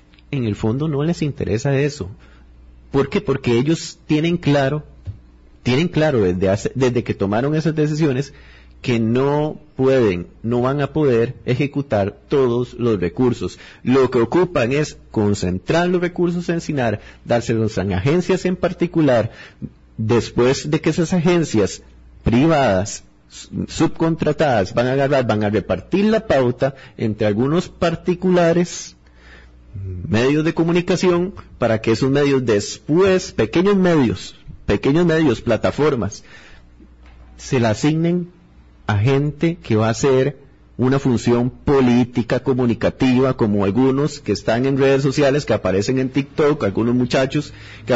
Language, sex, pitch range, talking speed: Spanish, male, 110-150 Hz, 130 wpm